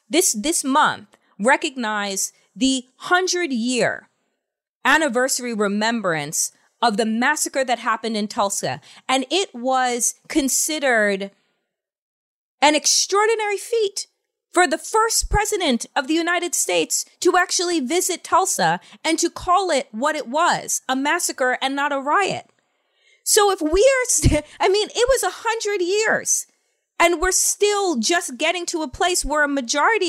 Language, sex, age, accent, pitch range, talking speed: English, female, 30-49, American, 255-360 Hz, 140 wpm